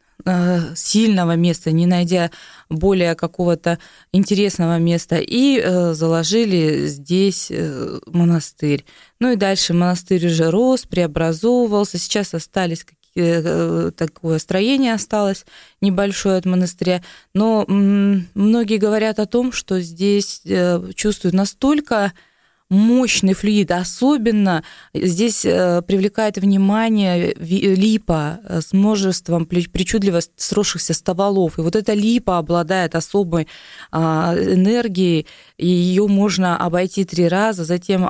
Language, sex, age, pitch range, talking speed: Russian, female, 20-39, 170-205 Hz, 100 wpm